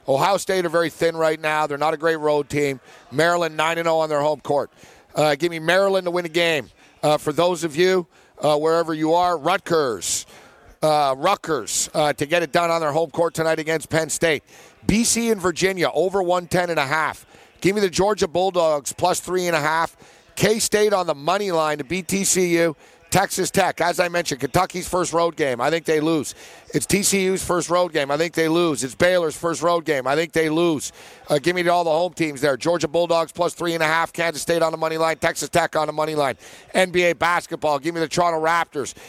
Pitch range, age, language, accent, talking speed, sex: 160-185 Hz, 50-69, English, American, 210 wpm, male